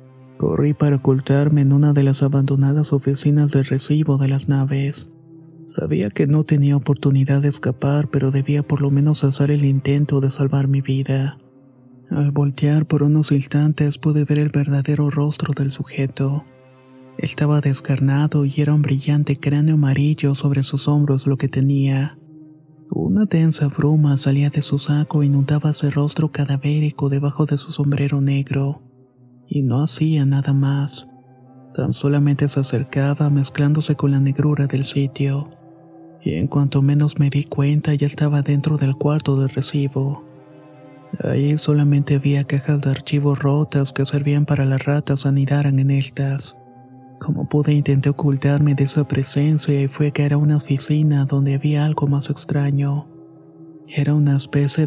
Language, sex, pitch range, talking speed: Spanish, male, 140-150 Hz, 155 wpm